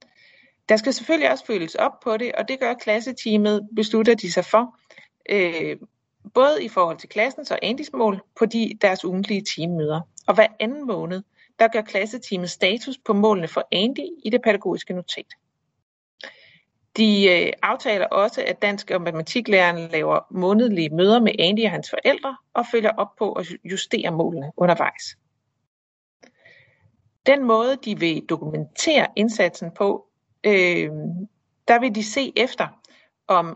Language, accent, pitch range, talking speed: Danish, native, 180-230 Hz, 150 wpm